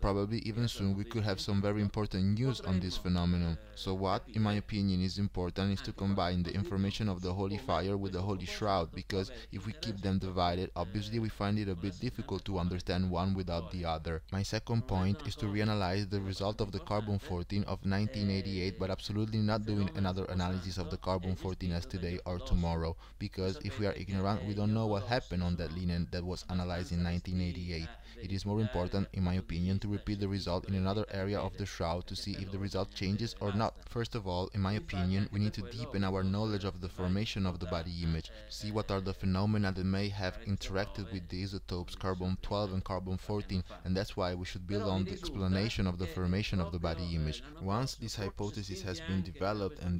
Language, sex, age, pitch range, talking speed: English, male, 20-39, 90-105 Hz, 215 wpm